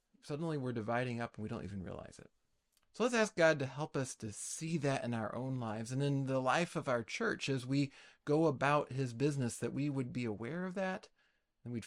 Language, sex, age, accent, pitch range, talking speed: English, male, 30-49, American, 115-150 Hz, 235 wpm